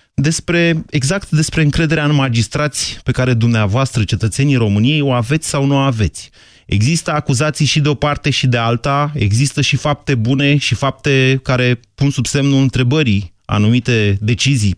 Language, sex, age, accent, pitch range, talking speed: Romanian, male, 30-49, native, 110-140 Hz, 160 wpm